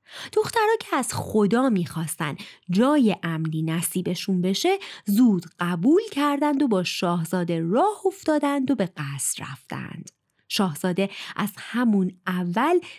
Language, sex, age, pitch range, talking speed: Persian, female, 30-49, 175-295 Hz, 115 wpm